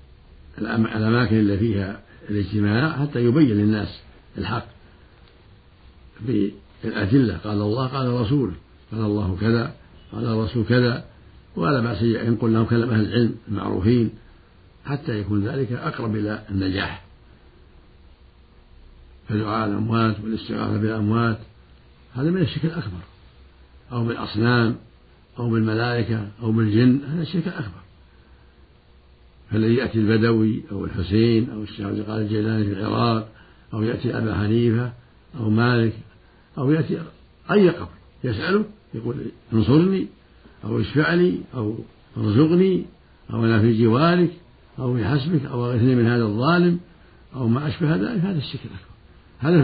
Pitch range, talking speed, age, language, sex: 100-120 Hz, 120 wpm, 60-79, Arabic, male